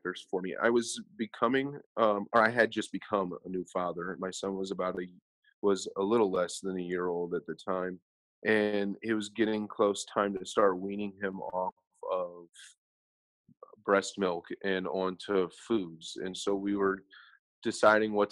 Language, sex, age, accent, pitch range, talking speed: English, male, 30-49, American, 90-100 Hz, 175 wpm